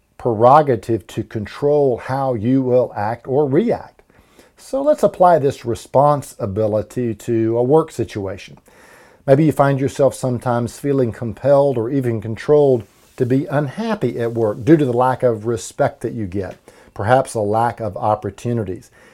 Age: 50-69